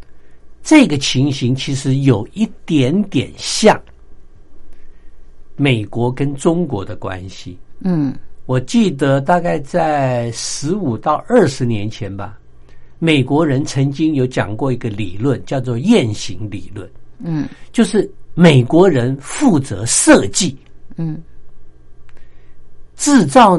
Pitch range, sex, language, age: 105-170 Hz, male, Japanese, 60-79